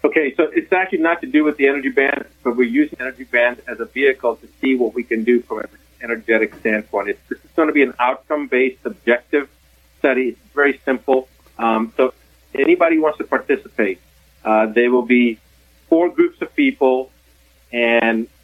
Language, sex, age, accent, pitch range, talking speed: English, male, 40-59, American, 120-145 Hz, 185 wpm